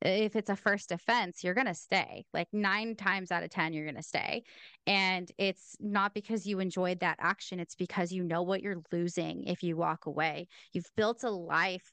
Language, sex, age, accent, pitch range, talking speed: English, female, 20-39, American, 175-210 Hz, 210 wpm